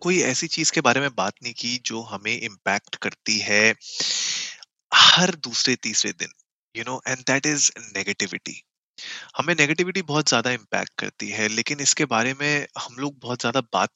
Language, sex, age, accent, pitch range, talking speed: Hindi, male, 20-39, native, 110-145 Hz, 170 wpm